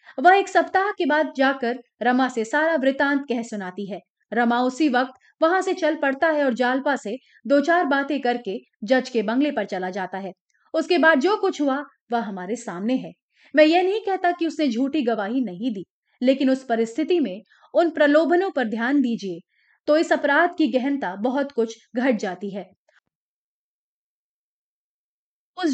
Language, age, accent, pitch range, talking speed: Hindi, 30-49, native, 235-320 Hz, 175 wpm